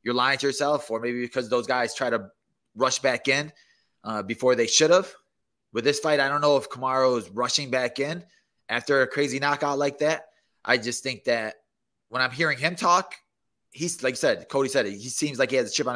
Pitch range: 120-145 Hz